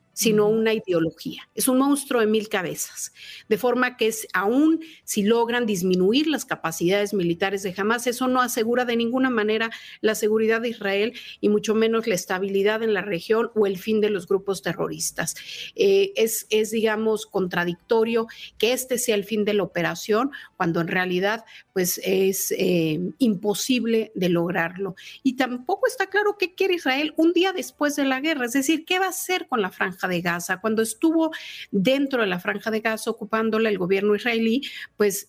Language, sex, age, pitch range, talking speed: Spanish, female, 40-59, 195-260 Hz, 180 wpm